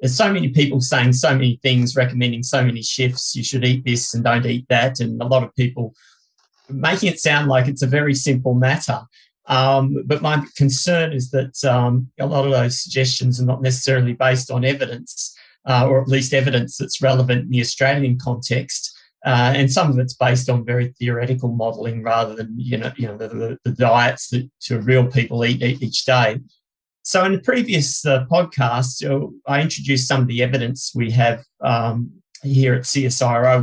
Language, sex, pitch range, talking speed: English, male, 125-140 Hz, 195 wpm